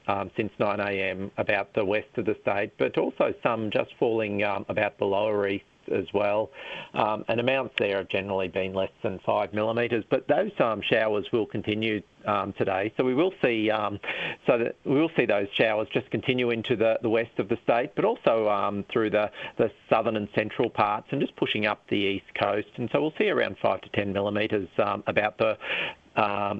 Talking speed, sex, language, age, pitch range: 210 wpm, male, English, 50-69, 100-120 Hz